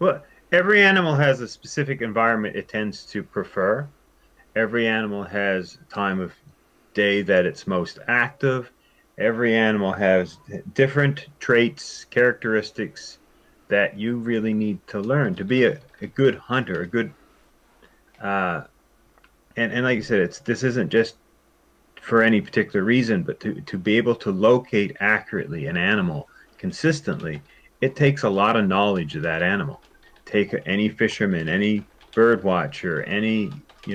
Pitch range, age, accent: 105-135 Hz, 30-49, American